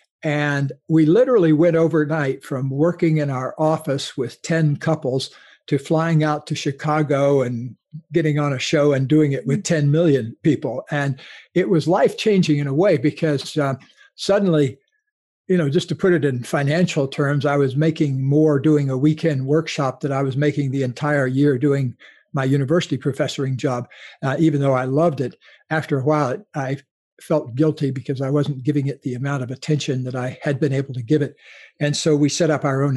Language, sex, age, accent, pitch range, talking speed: English, male, 60-79, American, 140-160 Hz, 195 wpm